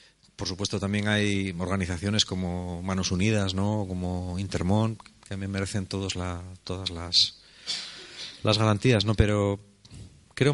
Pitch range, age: 95-120 Hz, 30-49